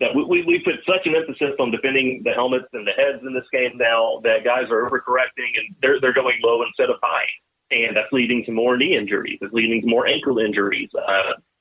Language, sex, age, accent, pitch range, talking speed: English, male, 30-49, American, 115-145 Hz, 225 wpm